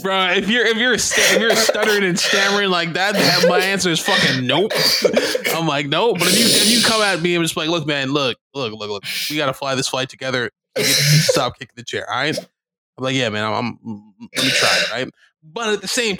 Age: 20-39